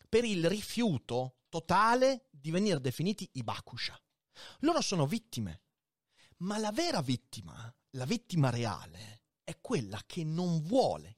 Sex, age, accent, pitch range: male, 30-49, native, 125-200 Hz